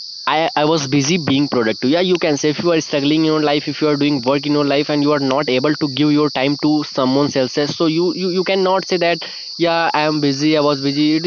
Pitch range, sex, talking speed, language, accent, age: 140-160 Hz, male, 280 wpm, Hindi, native, 20-39